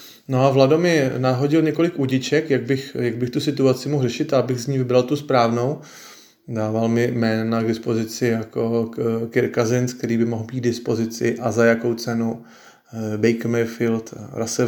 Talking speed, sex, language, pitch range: 155 wpm, male, Slovak, 115-125 Hz